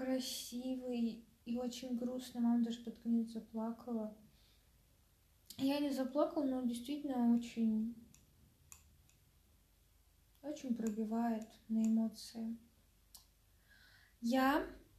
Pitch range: 205-260 Hz